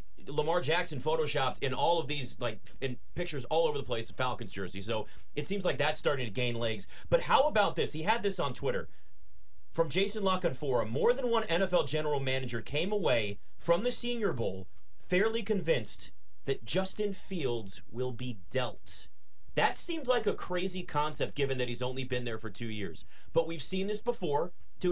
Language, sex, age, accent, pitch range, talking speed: English, male, 30-49, American, 110-175 Hz, 190 wpm